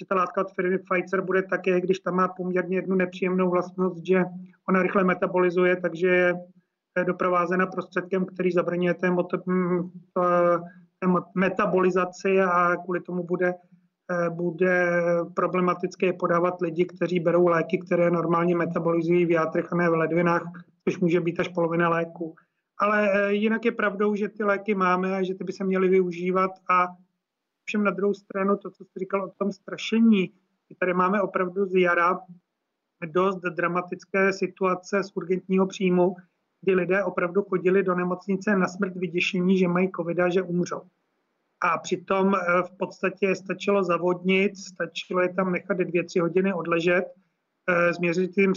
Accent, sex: native, male